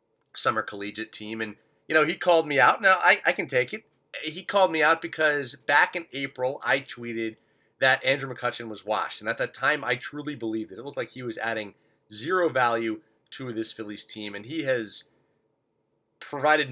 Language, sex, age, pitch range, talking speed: English, male, 30-49, 110-140 Hz, 195 wpm